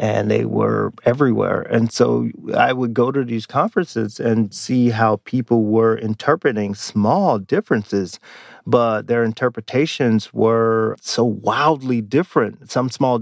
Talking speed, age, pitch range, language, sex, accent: 130 wpm, 40-59, 105-125 Hz, English, male, American